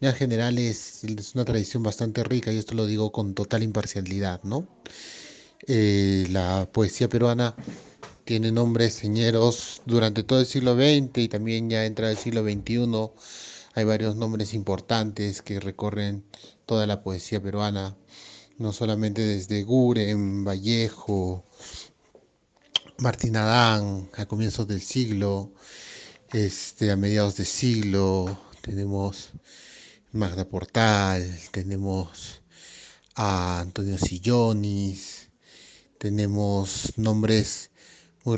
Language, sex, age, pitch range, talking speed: Spanish, male, 30-49, 95-115 Hz, 110 wpm